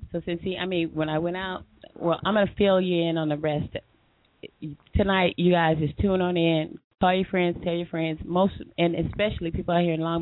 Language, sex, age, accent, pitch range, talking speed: English, female, 30-49, American, 165-185 Hz, 225 wpm